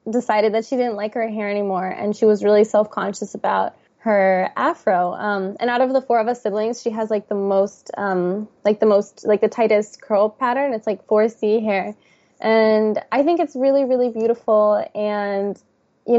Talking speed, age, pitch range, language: 195 wpm, 10-29, 205-235 Hz, English